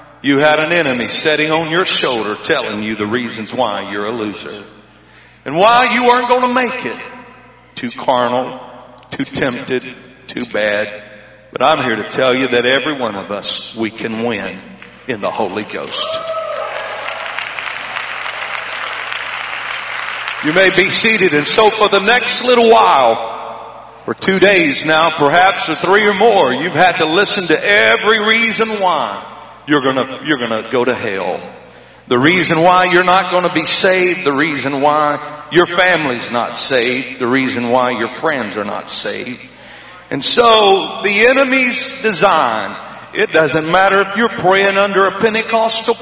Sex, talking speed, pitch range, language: male, 155 wpm, 130-215 Hz, English